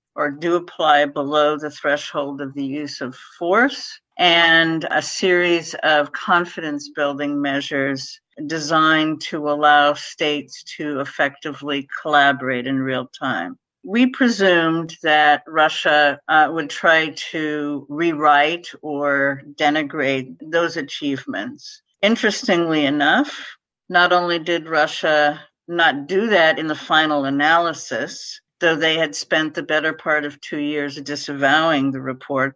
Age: 50-69